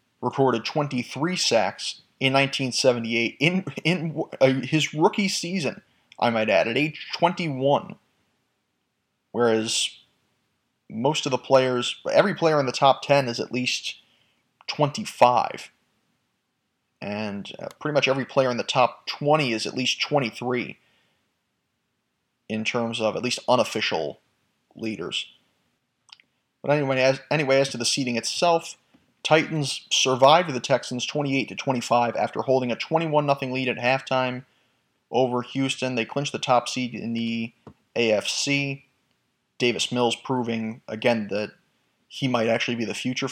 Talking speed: 130 wpm